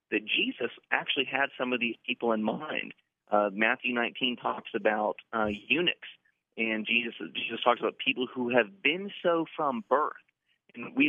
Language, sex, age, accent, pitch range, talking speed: English, male, 30-49, American, 110-135 Hz, 170 wpm